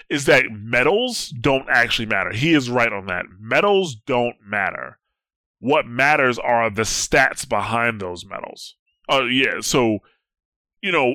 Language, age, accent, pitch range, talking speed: English, 20-39, American, 110-135 Hz, 145 wpm